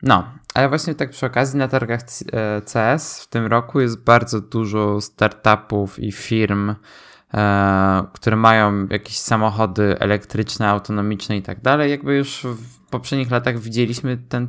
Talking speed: 145 wpm